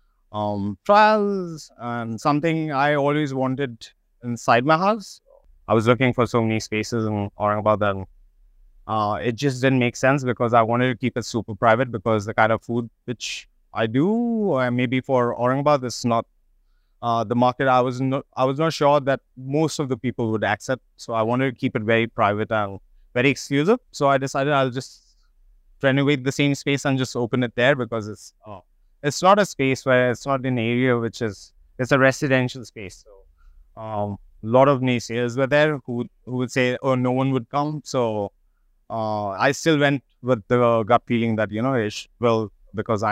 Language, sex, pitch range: English, male, 110-135 Hz